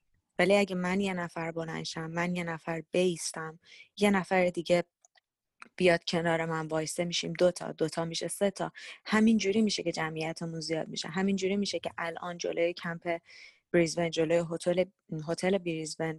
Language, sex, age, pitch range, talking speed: Persian, female, 20-39, 165-195 Hz, 155 wpm